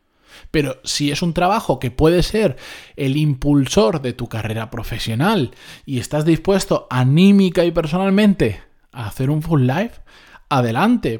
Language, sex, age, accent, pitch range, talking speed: Spanish, male, 20-39, Spanish, 125-175 Hz, 140 wpm